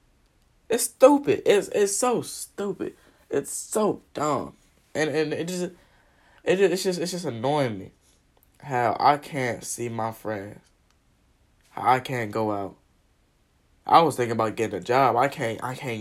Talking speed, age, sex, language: 160 wpm, 10-29, male, English